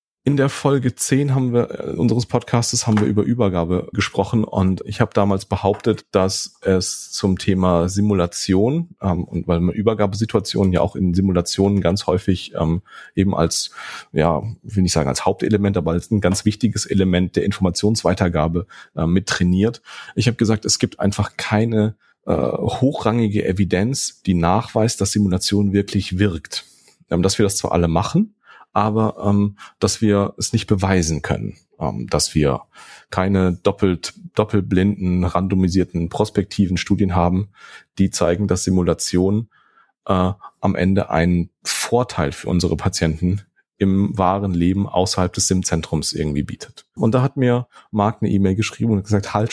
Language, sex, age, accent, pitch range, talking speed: German, male, 30-49, German, 90-110 Hz, 155 wpm